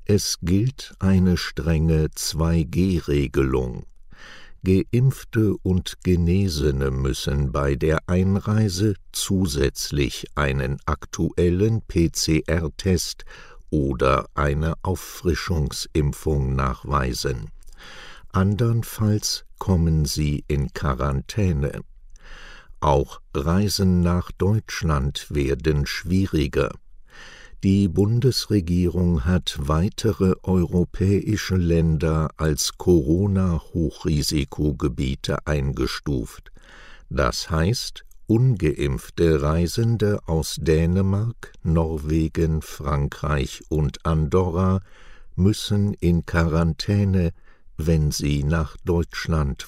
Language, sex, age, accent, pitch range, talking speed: German, male, 60-79, German, 75-95 Hz, 70 wpm